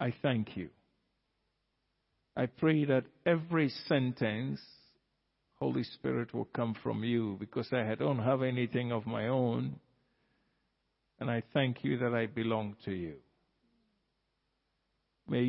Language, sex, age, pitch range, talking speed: English, male, 50-69, 110-145 Hz, 125 wpm